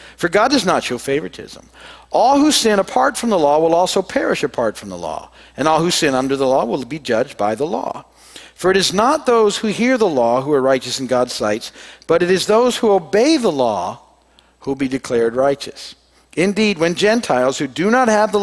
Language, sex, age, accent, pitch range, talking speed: English, male, 50-69, American, 140-215 Hz, 225 wpm